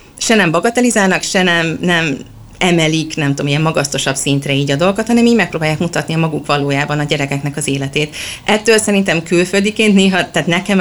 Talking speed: 180 wpm